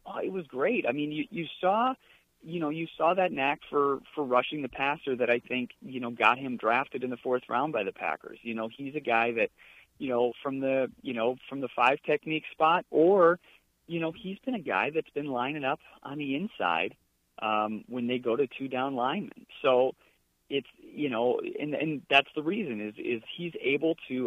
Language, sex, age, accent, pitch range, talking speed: English, male, 40-59, American, 115-150 Hz, 215 wpm